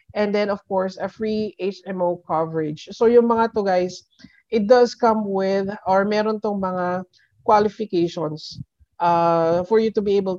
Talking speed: 160 wpm